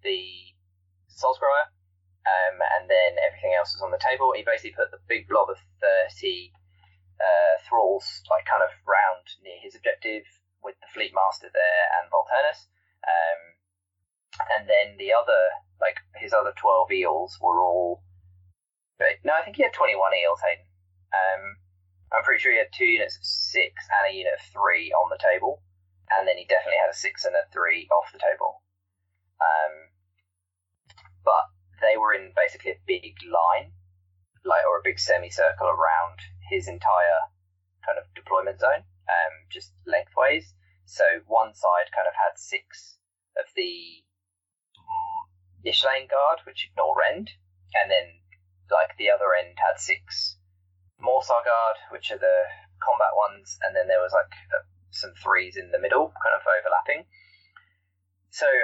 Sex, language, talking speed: male, English, 160 wpm